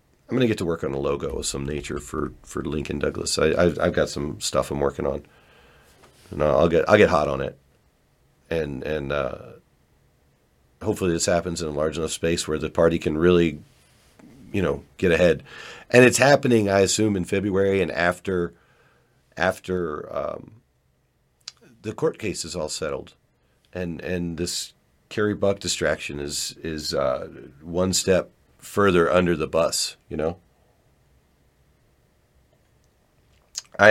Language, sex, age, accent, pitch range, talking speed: English, male, 50-69, American, 75-95 Hz, 155 wpm